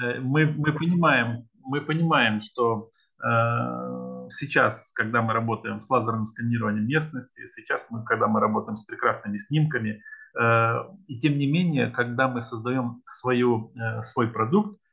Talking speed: 140 wpm